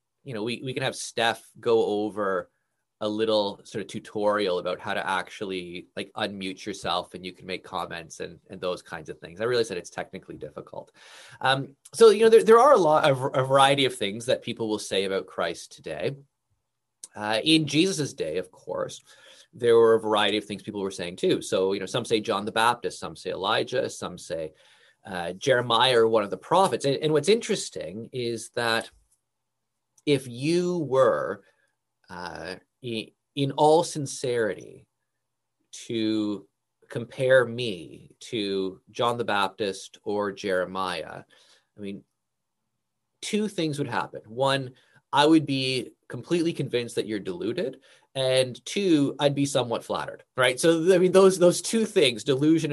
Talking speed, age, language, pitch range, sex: 165 wpm, 20-39, English, 105-150 Hz, male